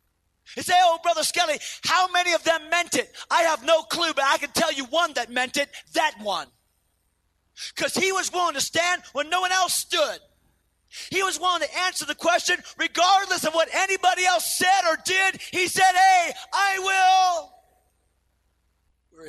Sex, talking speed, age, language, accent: male, 180 wpm, 30-49, English, American